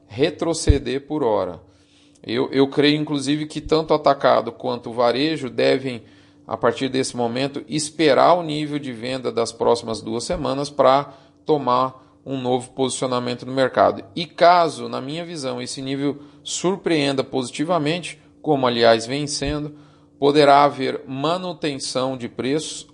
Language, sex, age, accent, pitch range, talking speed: Portuguese, male, 40-59, Brazilian, 130-155 Hz, 140 wpm